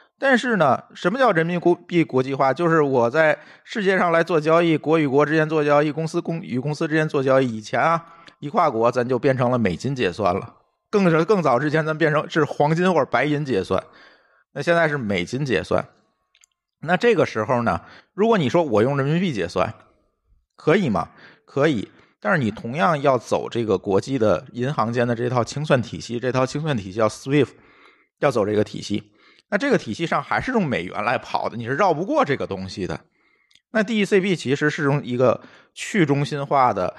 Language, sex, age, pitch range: Chinese, male, 50-69, 120-165 Hz